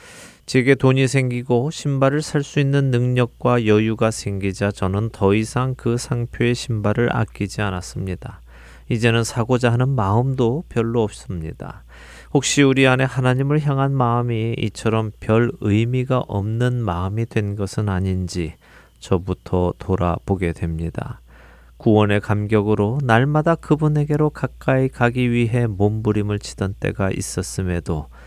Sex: male